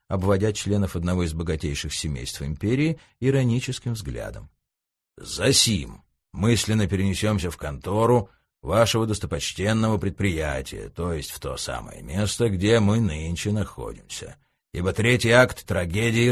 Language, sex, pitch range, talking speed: Russian, male, 90-115 Hz, 115 wpm